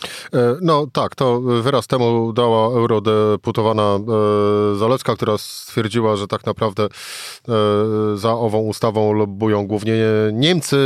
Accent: native